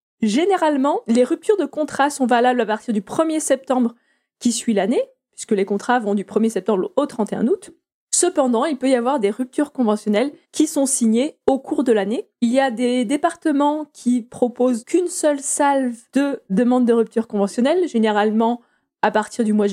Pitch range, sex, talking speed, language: 225-300 Hz, female, 185 wpm, French